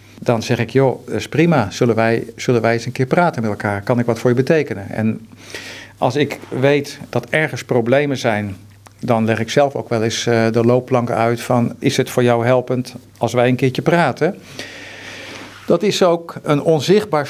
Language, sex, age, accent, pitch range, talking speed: Dutch, male, 50-69, Dutch, 115-140 Hz, 200 wpm